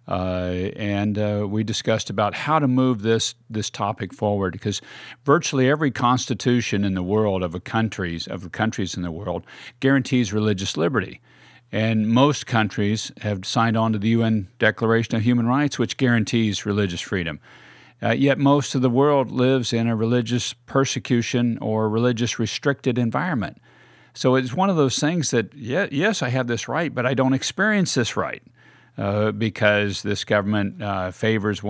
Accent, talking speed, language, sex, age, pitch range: American, 160 wpm, English, male, 50-69, 100-130 Hz